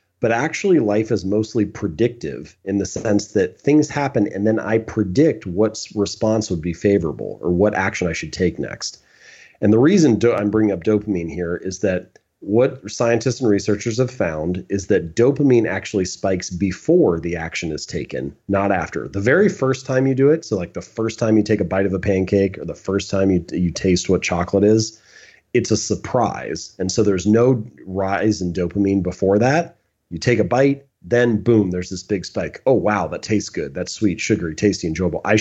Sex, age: male, 30-49